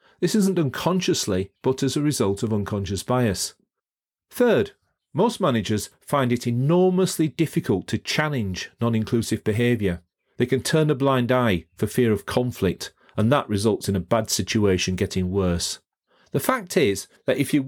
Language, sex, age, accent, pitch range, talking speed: English, male, 40-59, British, 105-140 Hz, 155 wpm